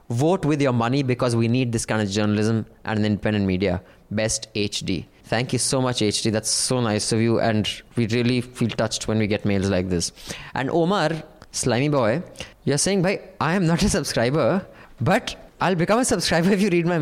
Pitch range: 110-155 Hz